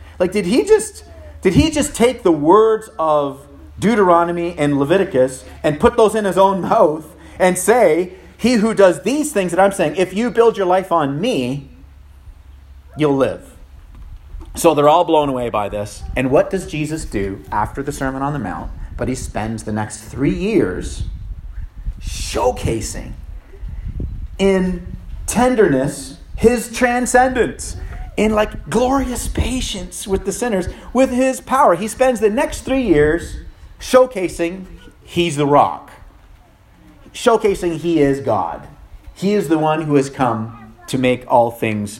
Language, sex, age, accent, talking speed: English, male, 30-49, American, 150 wpm